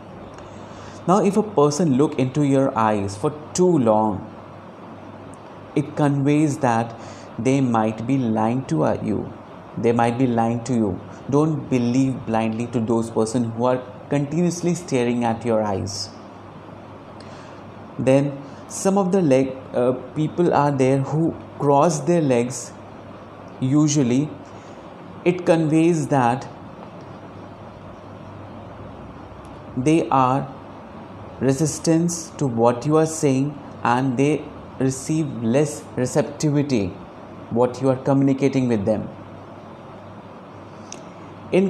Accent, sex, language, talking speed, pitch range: native, male, Hindi, 110 wpm, 110-145 Hz